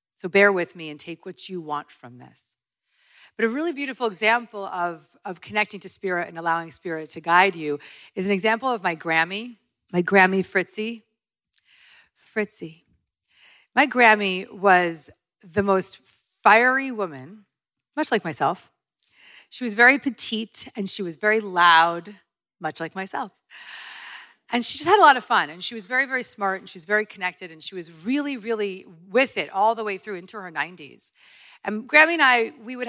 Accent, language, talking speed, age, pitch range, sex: American, English, 180 wpm, 30-49, 165-215 Hz, female